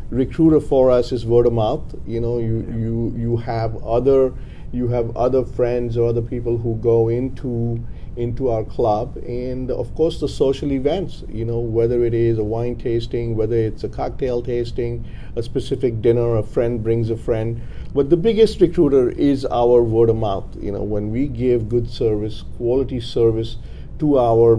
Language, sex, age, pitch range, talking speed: English, male, 50-69, 115-130 Hz, 180 wpm